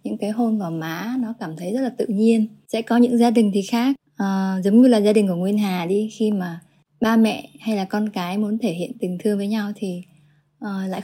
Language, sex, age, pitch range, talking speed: Vietnamese, female, 20-39, 185-225 Hz, 245 wpm